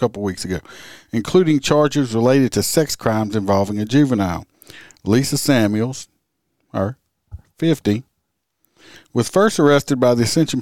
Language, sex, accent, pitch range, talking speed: English, male, American, 110-135 Hz, 125 wpm